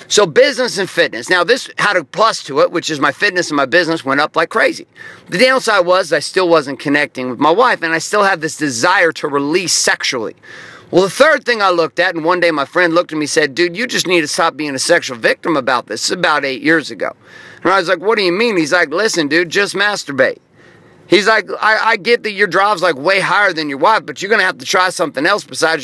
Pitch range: 150-190 Hz